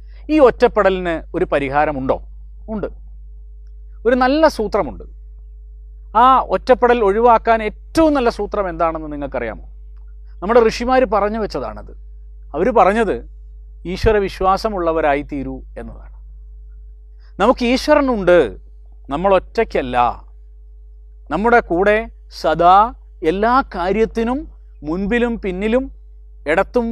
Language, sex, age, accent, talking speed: Malayalam, male, 40-59, native, 85 wpm